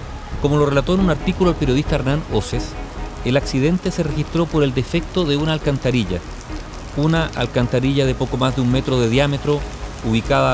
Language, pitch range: Spanish, 110-155 Hz